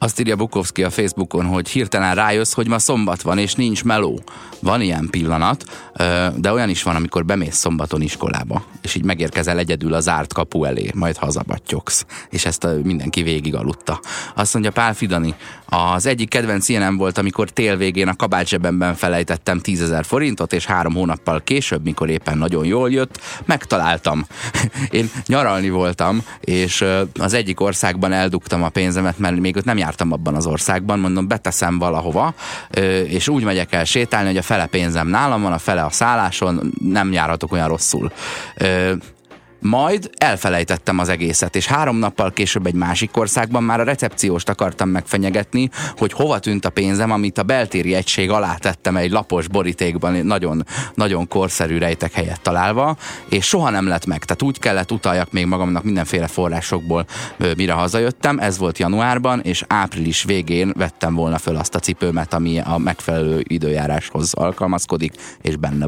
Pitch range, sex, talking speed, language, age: 85-105 Hz, male, 165 wpm, Hungarian, 30-49